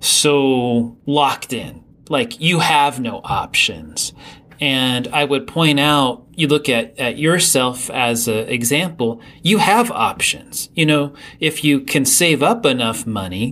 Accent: American